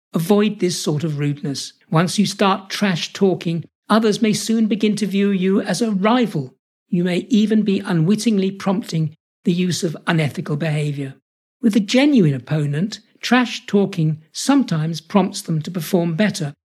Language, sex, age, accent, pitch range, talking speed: English, male, 60-79, British, 160-210 Hz, 150 wpm